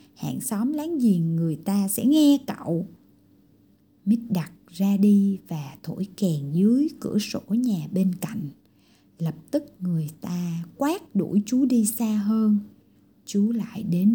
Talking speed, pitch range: 150 wpm, 170-240 Hz